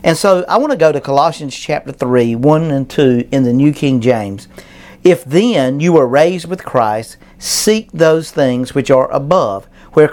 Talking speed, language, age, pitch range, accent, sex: 190 wpm, English, 50-69, 125-170 Hz, American, male